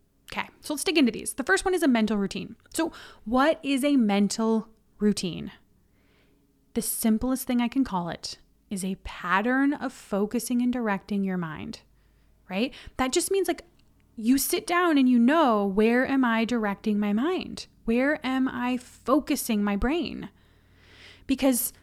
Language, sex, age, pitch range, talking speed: English, female, 30-49, 200-250 Hz, 160 wpm